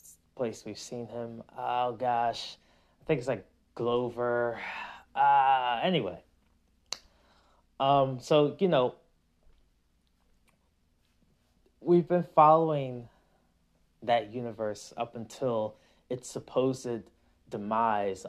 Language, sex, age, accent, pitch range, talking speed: English, male, 20-39, American, 90-130 Hz, 90 wpm